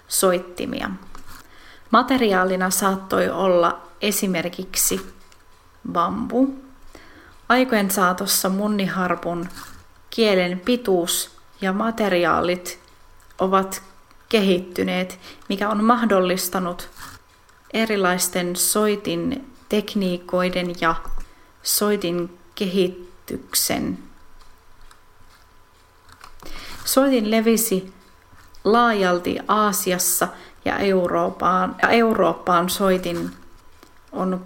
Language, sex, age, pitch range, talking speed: Finnish, female, 30-49, 170-205 Hz, 55 wpm